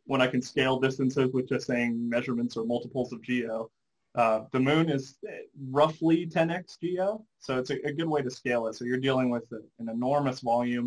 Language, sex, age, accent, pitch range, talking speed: English, male, 20-39, American, 120-140 Hz, 200 wpm